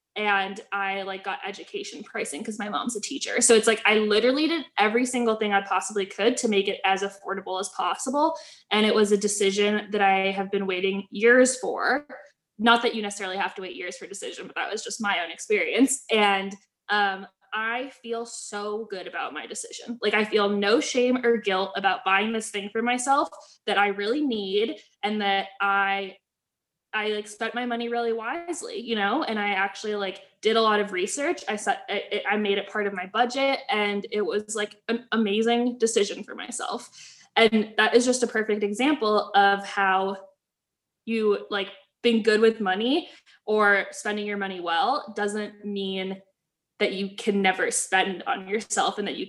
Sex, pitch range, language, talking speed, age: female, 195-235 Hz, English, 190 wpm, 10-29